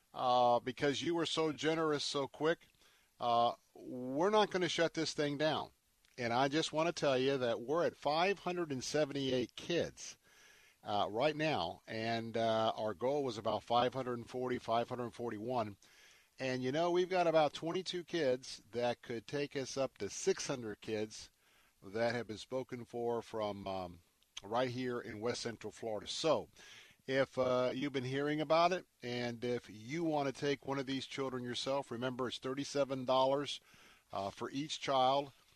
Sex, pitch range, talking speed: male, 115-140 Hz, 160 wpm